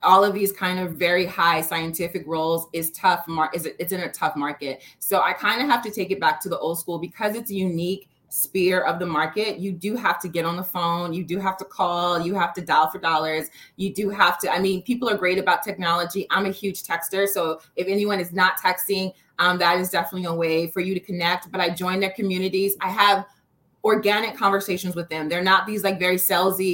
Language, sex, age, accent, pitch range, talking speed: English, female, 20-39, American, 170-200 Hz, 240 wpm